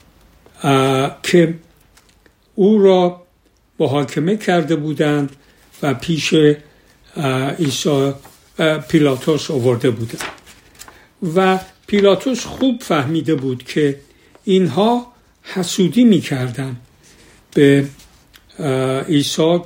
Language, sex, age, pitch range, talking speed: Persian, male, 60-79, 140-190 Hz, 70 wpm